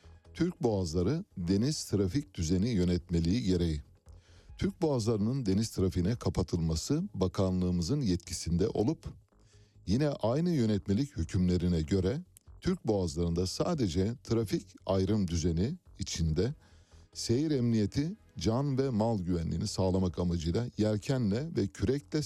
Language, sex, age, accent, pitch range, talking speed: Turkish, male, 60-79, native, 90-115 Hz, 100 wpm